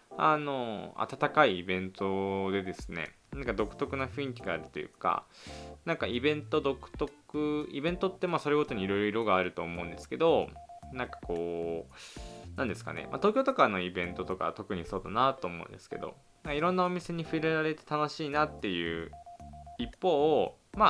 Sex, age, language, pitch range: male, 20-39, Japanese, 90-150 Hz